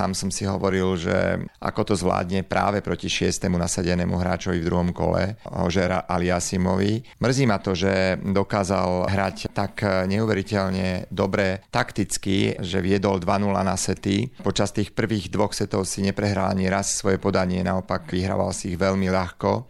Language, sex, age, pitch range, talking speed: Slovak, male, 40-59, 90-100 Hz, 150 wpm